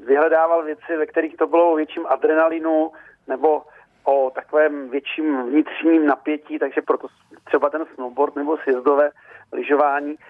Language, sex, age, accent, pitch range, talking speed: Czech, male, 40-59, native, 145-160 Hz, 135 wpm